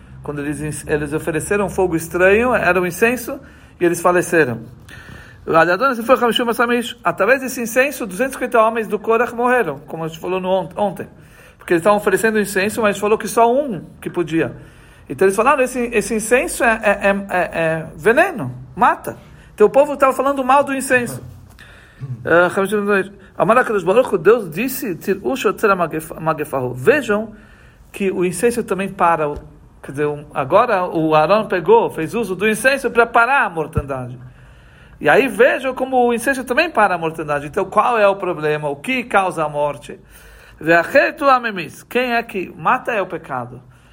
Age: 50-69